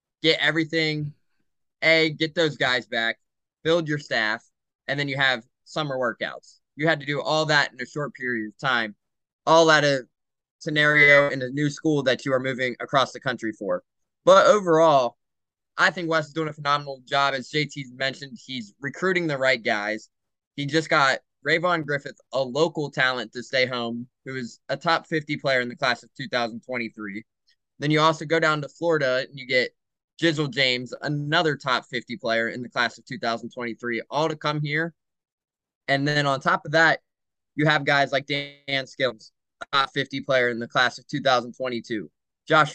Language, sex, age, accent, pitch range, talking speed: English, male, 20-39, American, 125-160 Hz, 180 wpm